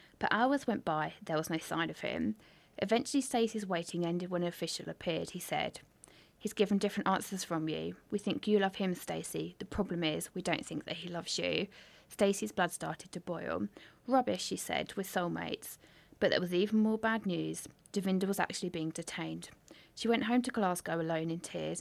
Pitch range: 165-210 Hz